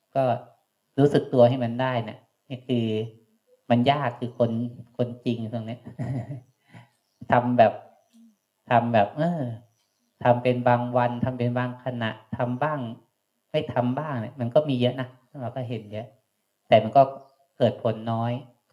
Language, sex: Thai, male